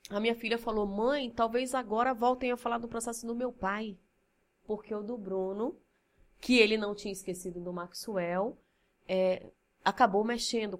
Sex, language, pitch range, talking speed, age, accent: female, Portuguese, 175-220 Hz, 155 wpm, 20-39, Brazilian